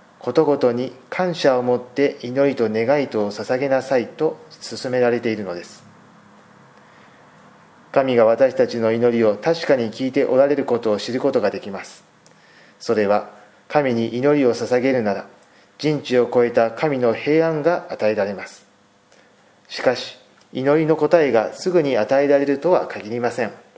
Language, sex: Japanese, male